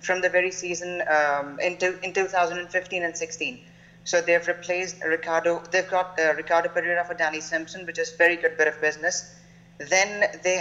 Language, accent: English, Indian